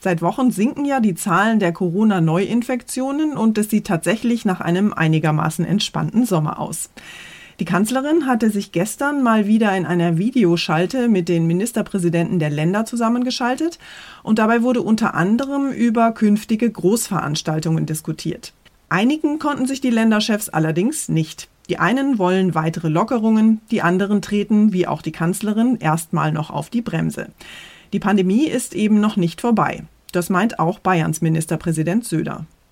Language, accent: German, German